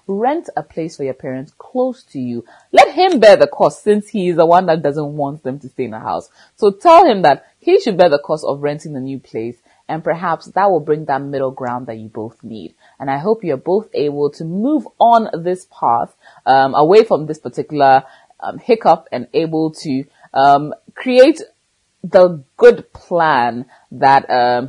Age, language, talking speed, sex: 30-49, English, 200 wpm, female